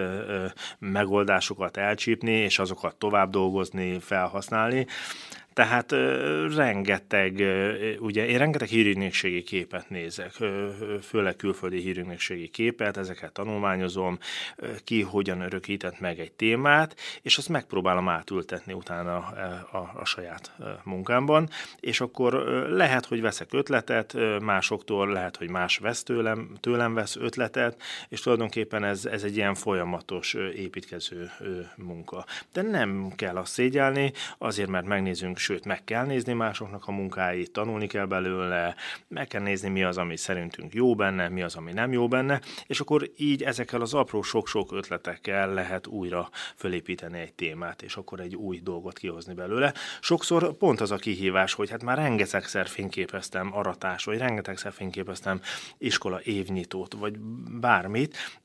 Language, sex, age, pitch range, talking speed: Hungarian, male, 30-49, 95-115 Hz, 140 wpm